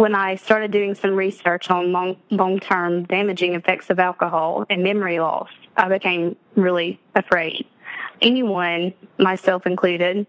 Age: 20-39